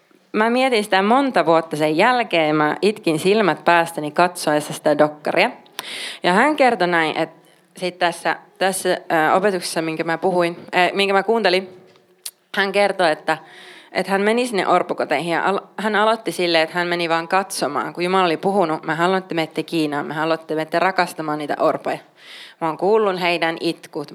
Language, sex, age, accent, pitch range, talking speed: Finnish, female, 20-39, native, 165-200 Hz, 160 wpm